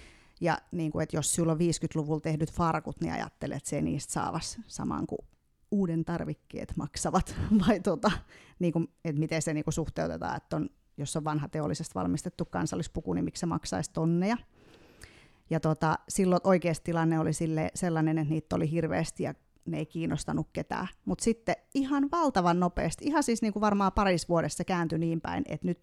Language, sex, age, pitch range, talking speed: Finnish, female, 30-49, 160-195 Hz, 175 wpm